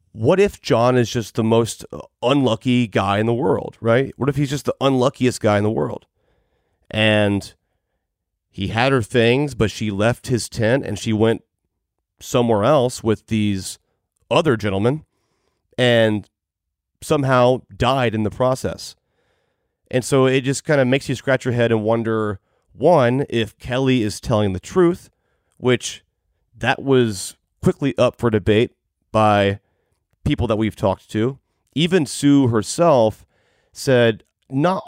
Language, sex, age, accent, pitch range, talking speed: English, male, 30-49, American, 105-135 Hz, 150 wpm